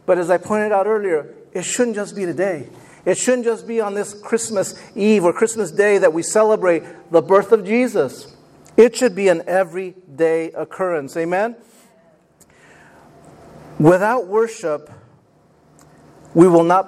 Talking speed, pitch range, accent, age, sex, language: 145 wpm, 175-225 Hz, American, 50-69, male, English